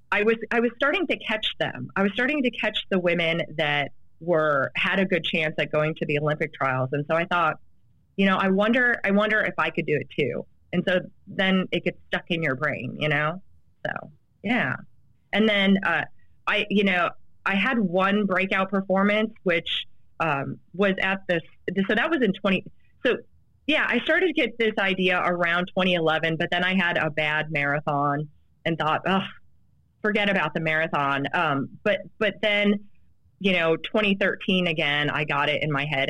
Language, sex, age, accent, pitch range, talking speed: English, female, 30-49, American, 150-195 Hz, 190 wpm